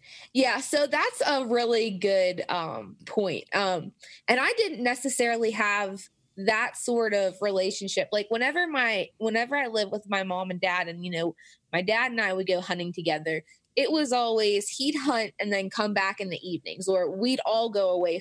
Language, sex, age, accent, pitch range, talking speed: English, female, 20-39, American, 190-225 Hz, 190 wpm